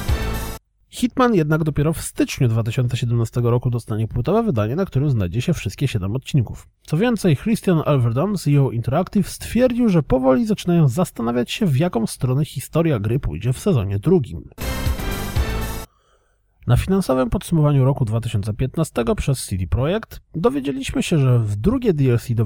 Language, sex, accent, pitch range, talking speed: Polish, male, native, 110-170 Hz, 145 wpm